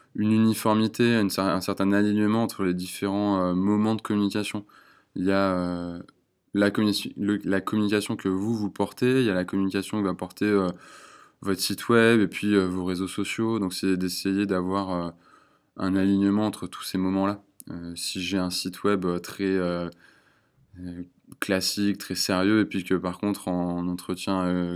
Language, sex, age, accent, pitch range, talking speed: French, male, 20-39, French, 90-100 Hz, 170 wpm